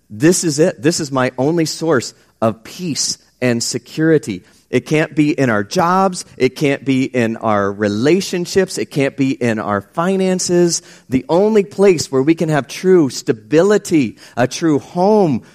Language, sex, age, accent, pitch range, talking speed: English, male, 40-59, American, 115-160 Hz, 160 wpm